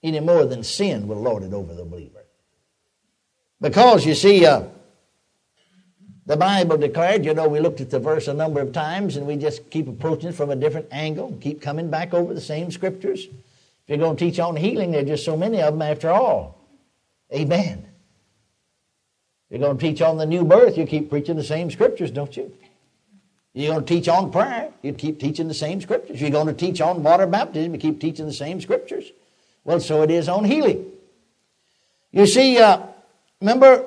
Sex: male